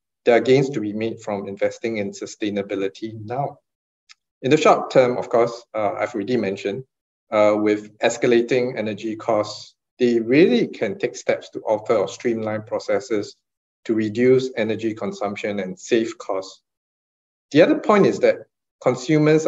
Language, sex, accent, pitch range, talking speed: English, male, Malaysian, 105-145 Hz, 150 wpm